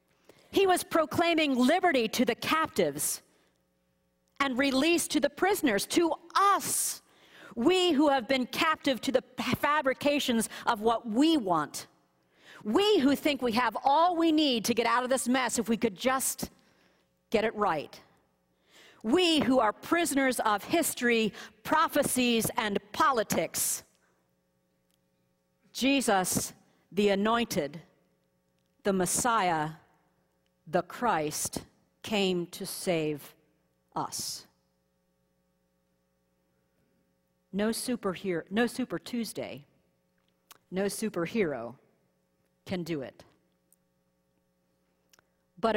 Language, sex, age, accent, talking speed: English, female, 50-69, American, 100 wpm